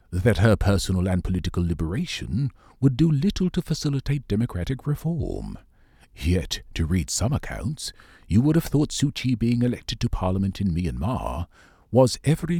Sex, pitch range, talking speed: male, 85-135 Hz, 150 wpm